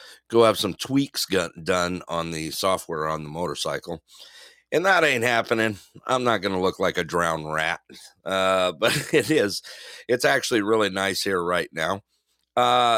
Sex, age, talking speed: male, 50-69, 170 wpm